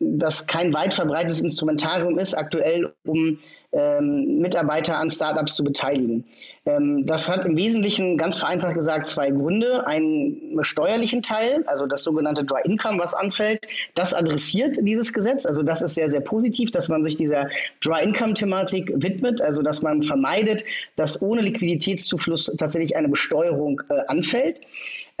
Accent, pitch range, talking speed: German, 160-195 Hz, 150 wpm